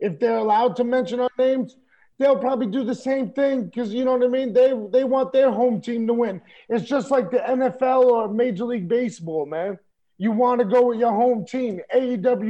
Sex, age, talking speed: male, 30-49, 220 wpm